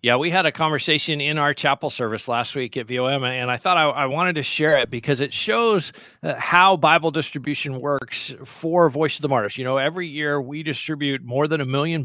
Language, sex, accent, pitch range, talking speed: English, male, American, 140-175 Hz, 220 wpm